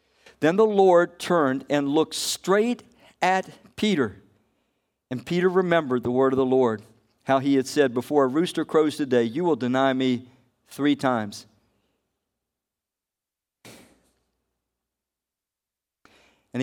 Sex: male